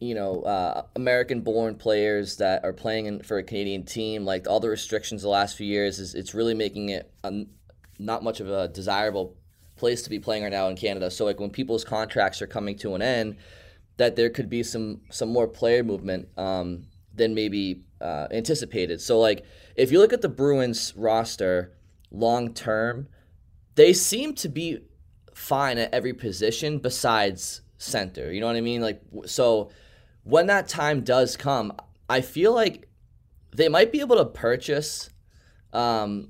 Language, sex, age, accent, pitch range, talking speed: English, male, 20-39, American, 100-130 Hz, 175 wpm